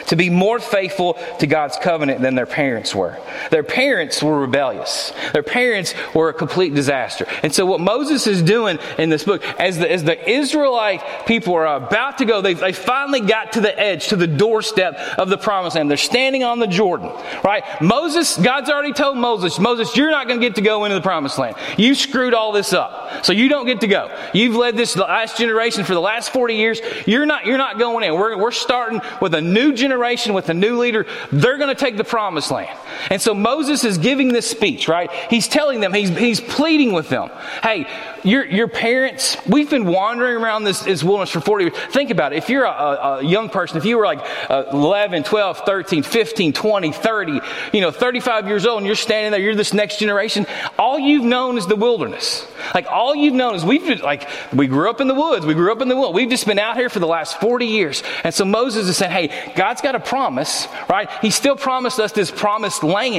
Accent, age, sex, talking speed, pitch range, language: American, 30-49, male, 225 wpm, 190-250 Hz, English